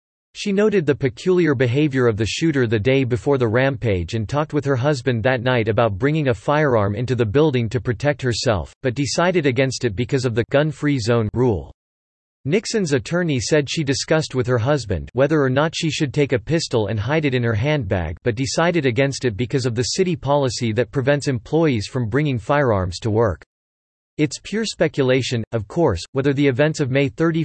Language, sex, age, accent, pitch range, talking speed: English, male, 40-59, American, 115-150 Hz, 195 wpm